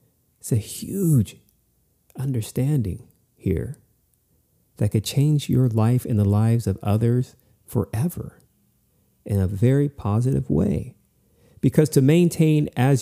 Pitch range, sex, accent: 95-125 Hz, male, American